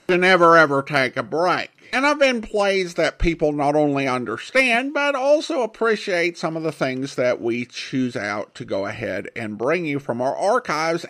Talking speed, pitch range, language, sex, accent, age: 190 wpm, 130-170 Hz, English, male, American, 50-69